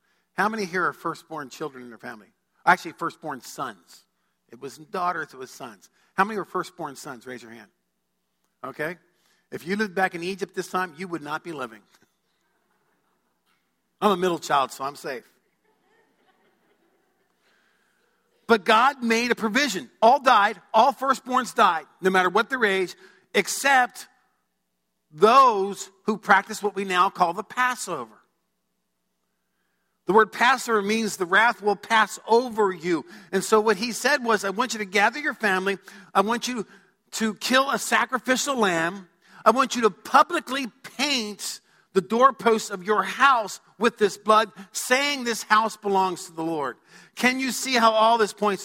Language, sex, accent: English, male, American